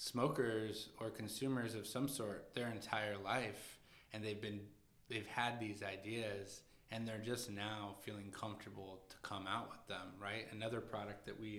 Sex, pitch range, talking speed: male, 105-120 Hz, 165 wpm